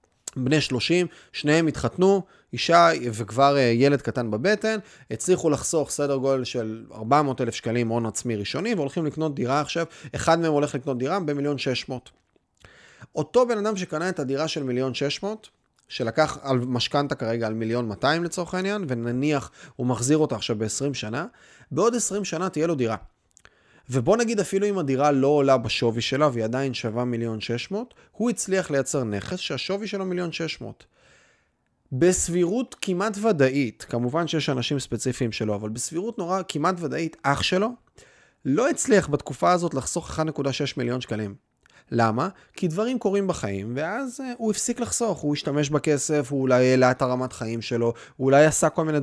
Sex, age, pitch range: male, 30-49, 125-175 Hz